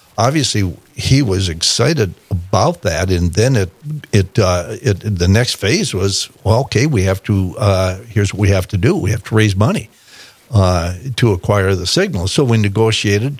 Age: 60-79